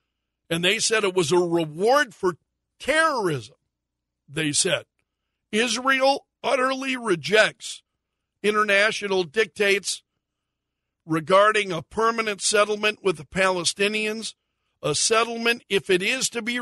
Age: 60-79